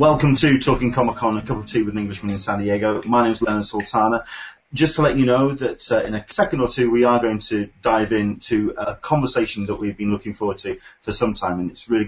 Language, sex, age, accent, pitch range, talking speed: English, male, 30-49, British, 100-130 Hz, 260 wpm